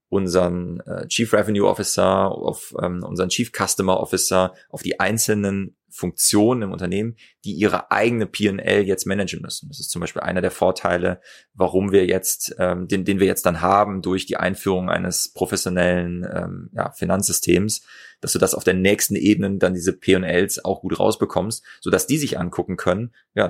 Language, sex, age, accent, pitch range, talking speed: German, male, 30-49, German, 90-100 Hz, 175 wpm